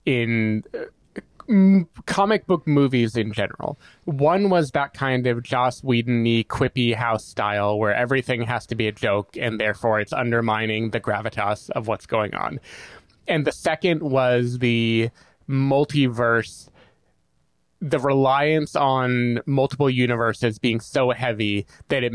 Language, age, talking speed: English, 20-39, 135 wpm